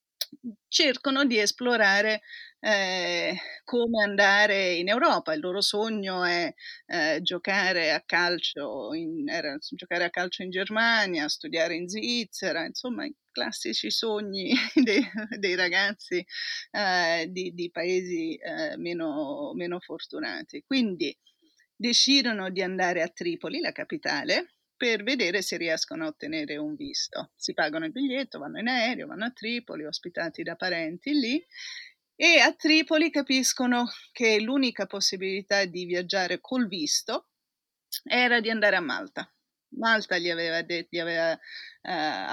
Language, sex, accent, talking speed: Italian, female, native, 130 wpm